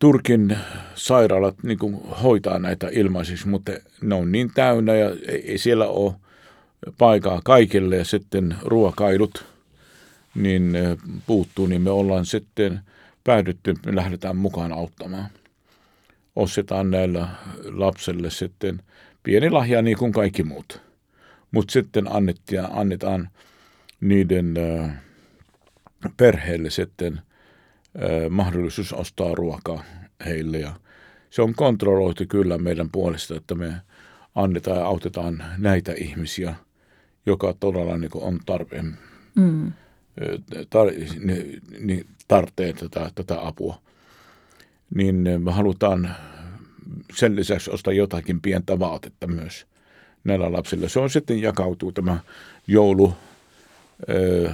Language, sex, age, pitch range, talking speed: Finnish, male, 50-69, 85-100 Hz, 100 wpm